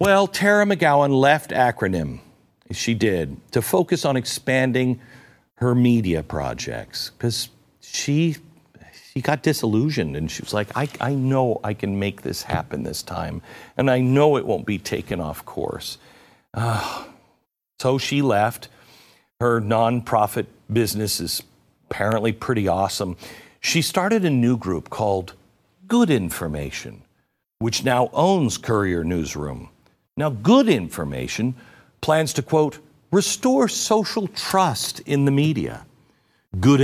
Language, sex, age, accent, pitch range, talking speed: English, male, 50-69, American, 105-155 Hz, 130 wpm